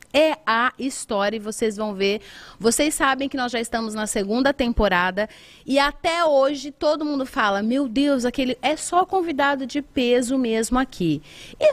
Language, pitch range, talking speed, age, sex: Portuguese, 220-280 Hz, 170 wpm, 30-49, female